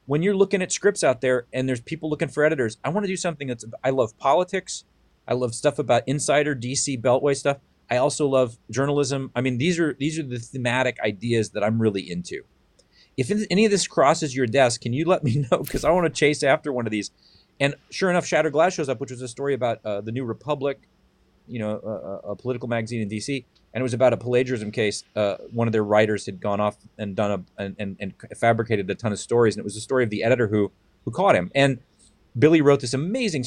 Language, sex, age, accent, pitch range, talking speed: English, male, 40-59, American, 115-140 Hz, 240 wpm